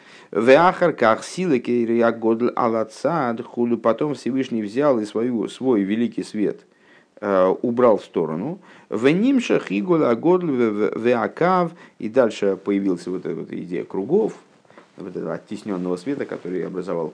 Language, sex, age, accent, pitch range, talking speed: Russian, male, 50-69, native, 105-145 Hz, 100 wpm